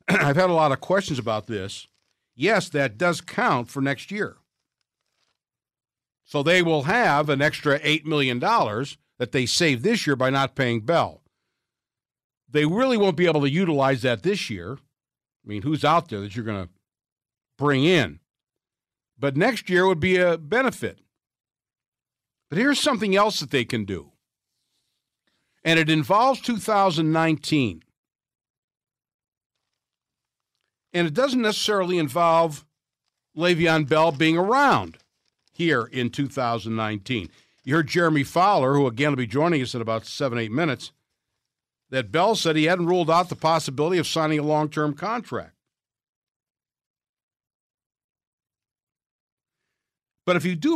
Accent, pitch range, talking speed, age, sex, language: American, 125-175 Hz, 140 wpm, 60-79, male, English